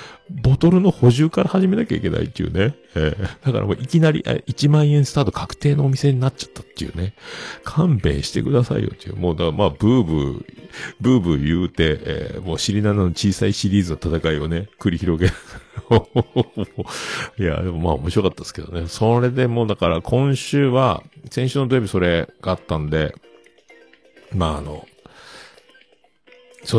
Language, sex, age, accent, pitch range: Japanese, male, 50-69, native, 85-140 Hz